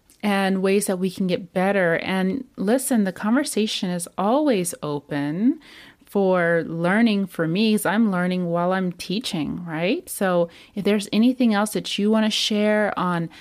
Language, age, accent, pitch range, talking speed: English, 30-49, American, 175-220 Hz, 160 wpm